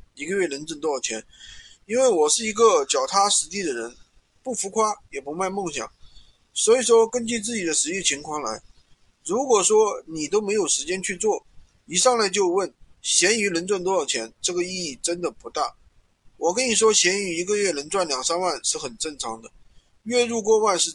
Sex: male